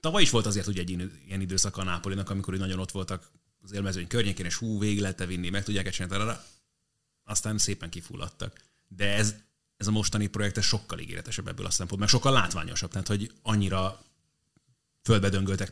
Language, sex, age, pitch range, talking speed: Hungarian, male, 30-49, 95-110 Hz, 170 wpm